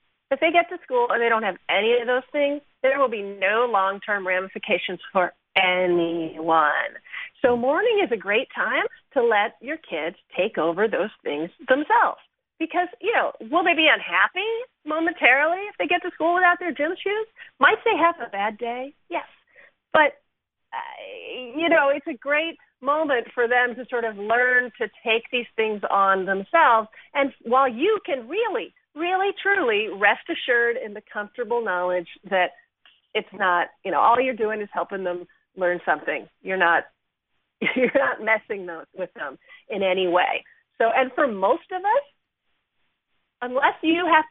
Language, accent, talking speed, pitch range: English, American, 165 wpm, 205-330 Hz